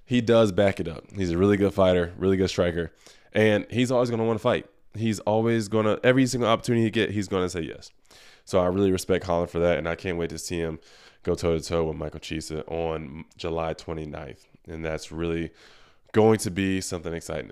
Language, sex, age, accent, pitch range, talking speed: English, male, 20-39, American, 85-100 Hz, 225 wpm